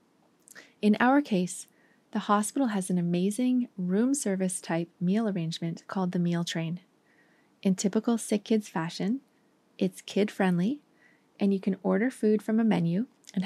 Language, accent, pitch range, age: English, American, 185-235 Hz, 30-49